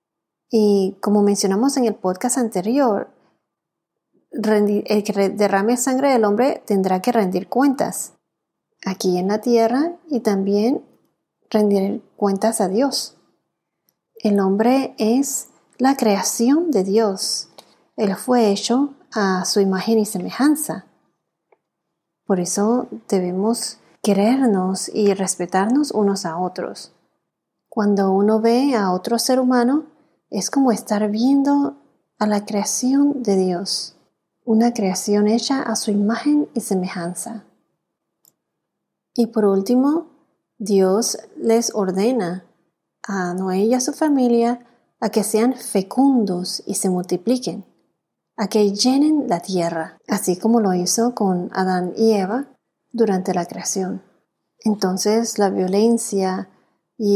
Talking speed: 120 wpm